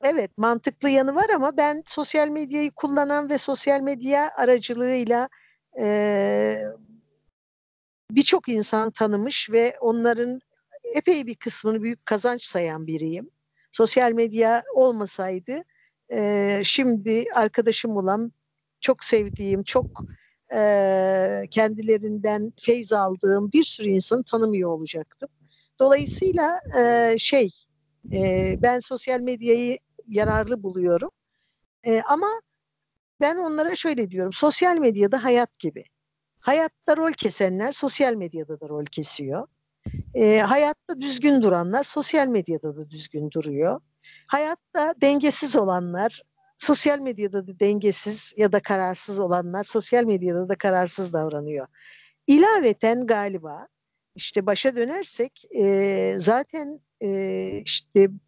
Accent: native